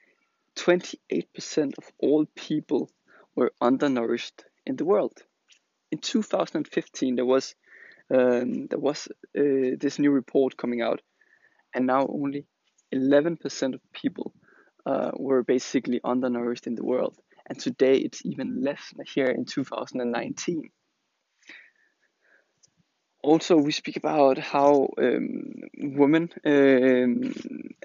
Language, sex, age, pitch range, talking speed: English, male, 20-39, 130-190 Hz, 110 wpm